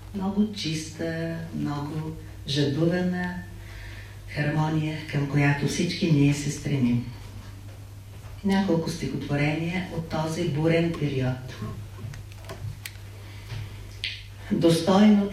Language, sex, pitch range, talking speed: Bulgarian, female, 105-160 Hz, 70 wpm